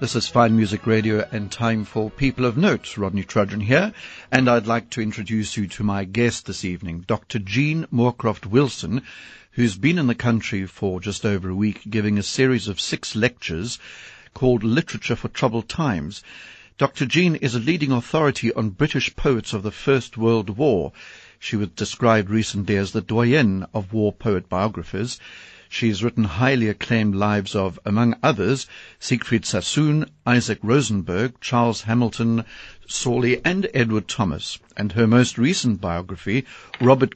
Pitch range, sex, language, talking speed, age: 100-120 Hz, male, English, 160 wpm, 60-79